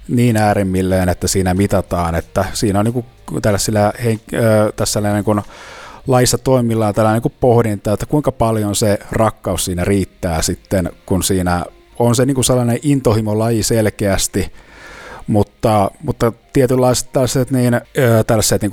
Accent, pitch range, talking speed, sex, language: native, 100-125 Hz, 135 wpm, male, Finnish